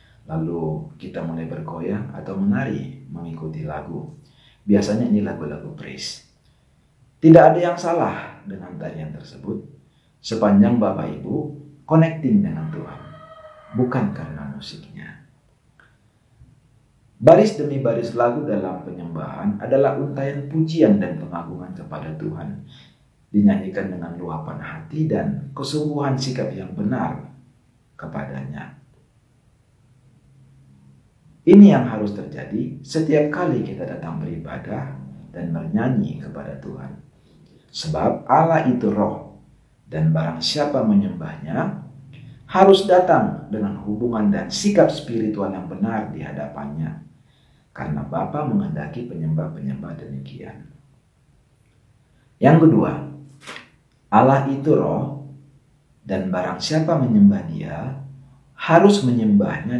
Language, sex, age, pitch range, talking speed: Indonesian, male, 50-69, 100-155 Hz, 100 wpm